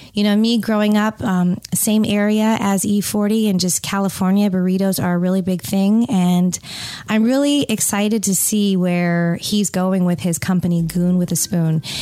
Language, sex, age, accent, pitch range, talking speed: English, female, 30-49, American, 180-215 Hz, 175 wpm